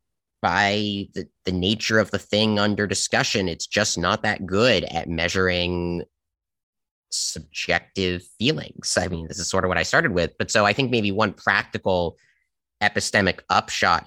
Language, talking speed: English, 160 wpm